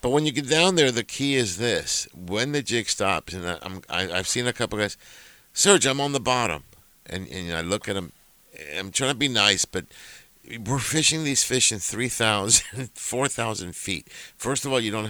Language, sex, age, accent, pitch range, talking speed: English, male, 50-69, American, 95-130 Hz, 210 wpm